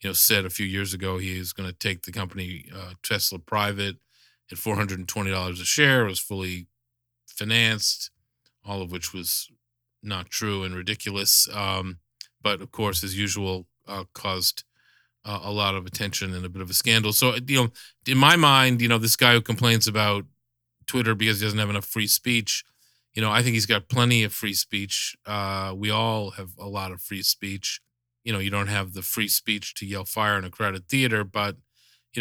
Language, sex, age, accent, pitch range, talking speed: English, male, 40-59, American, 100-115 Hz, 205 wpm